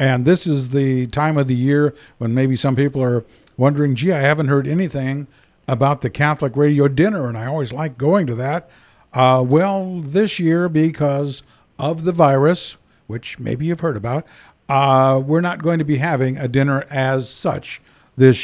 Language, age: English, 60-79